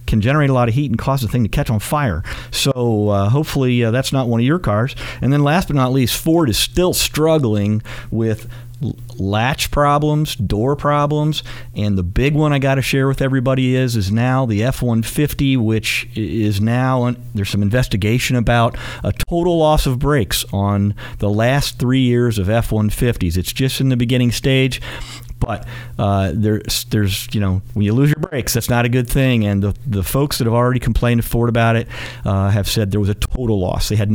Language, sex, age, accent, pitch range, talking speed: English, male, 50-69, American, 105-135 Hz, 215 wpm